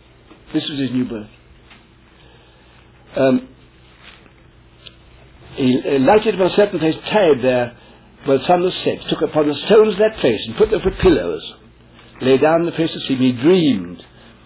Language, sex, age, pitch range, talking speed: English, male, 60-79, 125-200 Hz, 170 wpm